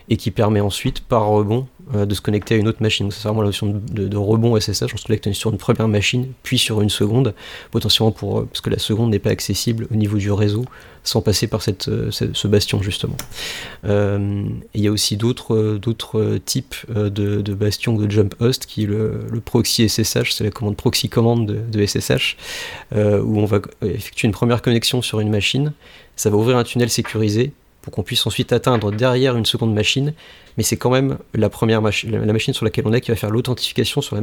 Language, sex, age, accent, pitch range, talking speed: French, male, 30-49, French, 105-120 Hz, 225 wpm